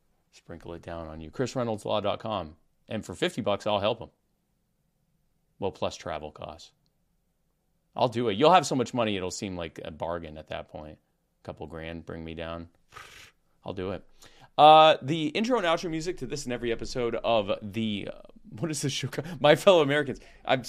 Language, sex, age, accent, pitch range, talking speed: English, male, 30-49, American, 95-140 Hz, 190 wpm